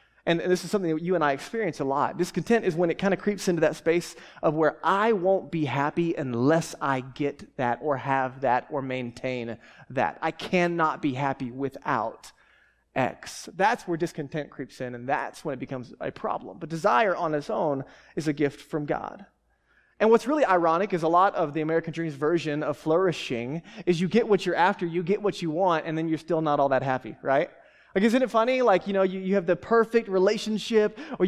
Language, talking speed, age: English, 220 wpm, 30-49